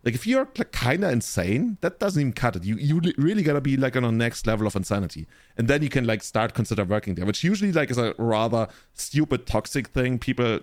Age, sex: 30-49, male